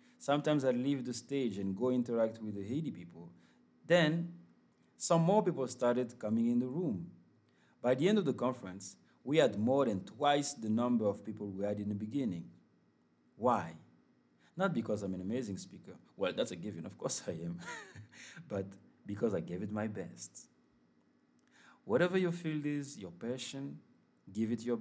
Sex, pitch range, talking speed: male, 90-135 Hz, 175 wpm